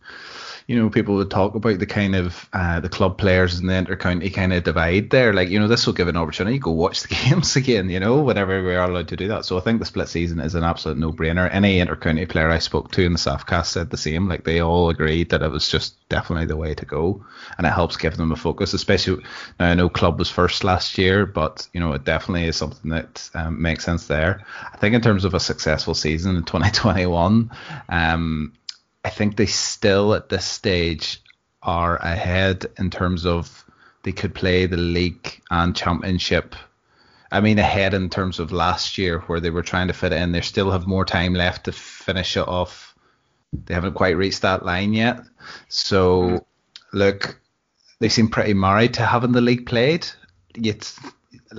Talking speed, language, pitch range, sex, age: 210 wpm, English, 85-100 Hz, male, 20-39